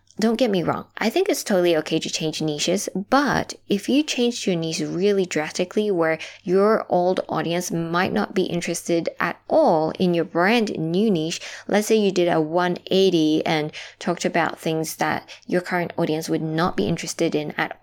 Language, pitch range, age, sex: English, 165-220 Hz, 20-39, female